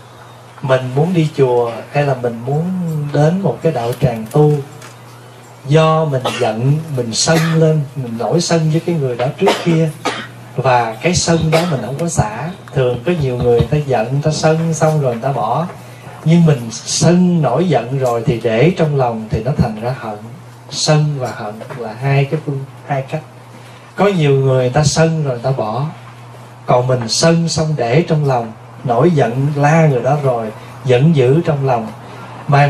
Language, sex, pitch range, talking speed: Vietnamese, male, 125-160 Hz, 180 wpm